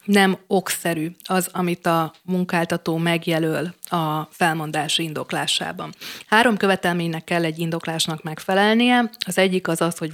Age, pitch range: 20-39, 165-195 Hz